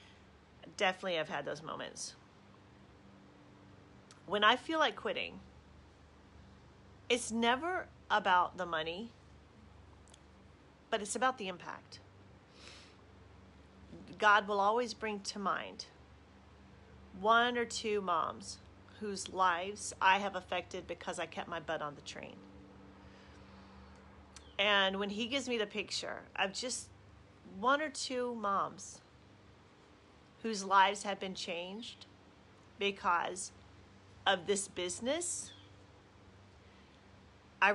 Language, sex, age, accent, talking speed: English, female, 40-59, American, 105 wpm